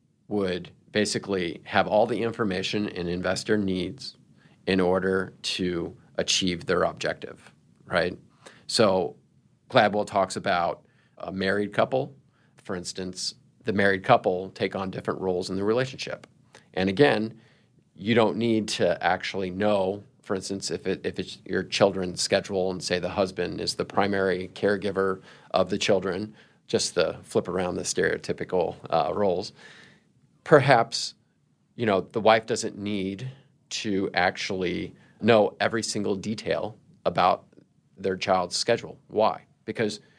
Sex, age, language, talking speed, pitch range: male, 40-59, English, 135 wpm, 95-105 Hz